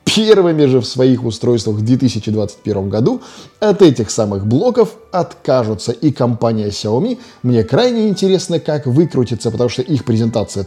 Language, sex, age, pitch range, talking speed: Russian, male, 20-39, 115-165 Hz, 140 wpm